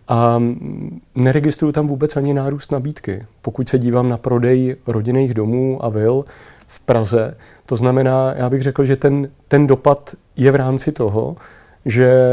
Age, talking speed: 40-59, 155 wpm